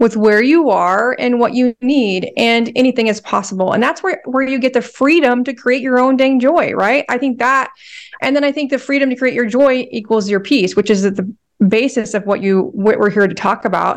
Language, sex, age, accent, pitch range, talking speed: English, female, 30-49, American, 195-255 Hz, 245 wpm